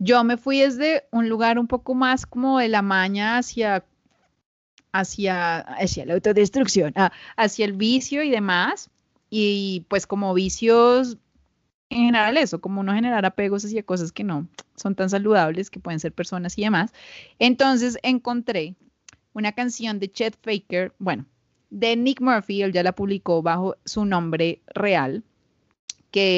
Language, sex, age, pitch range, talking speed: Spanish, female, 30-49, 190-235 Hz, 150 wpm